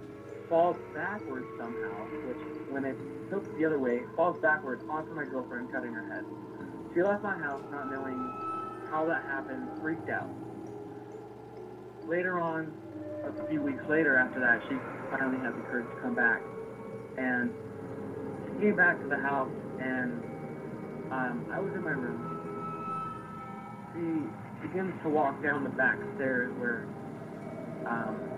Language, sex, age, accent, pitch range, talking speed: English, male, 20-39, American, 125-180 Hz, 145 wpm